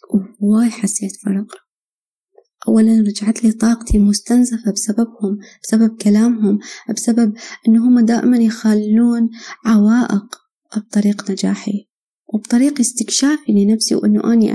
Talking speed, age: 95 wpm, 20-39